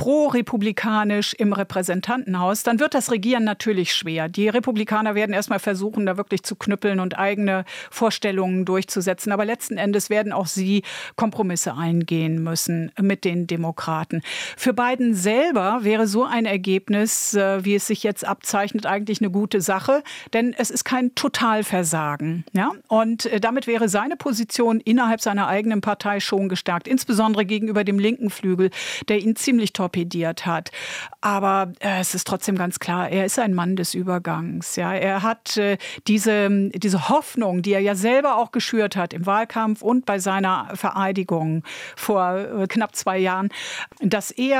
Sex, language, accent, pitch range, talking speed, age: female, German, German, 185-225 Hz, 155 wpm, 50-69